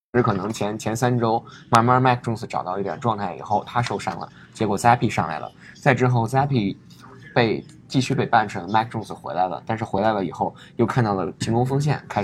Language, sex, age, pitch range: Chinese, male, 10-29, 105-130 Hz